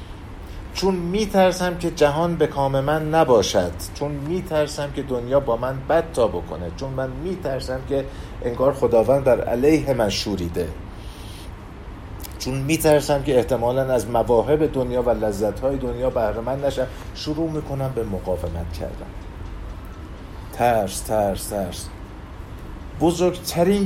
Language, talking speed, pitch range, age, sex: Persian, 130 wpm, 95-150 Hz, 50-69, male